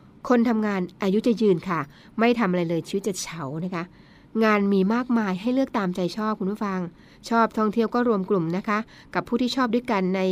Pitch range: 180-230 Hz